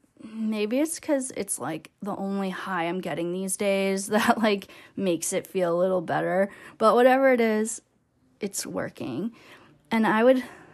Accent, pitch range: American, 175-230 Hz